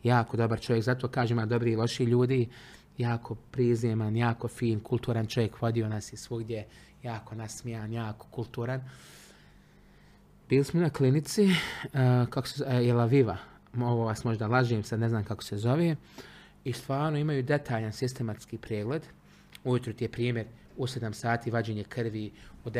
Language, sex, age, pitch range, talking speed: Croatian, male, 30-49, 115-135 Hz, 160 wpm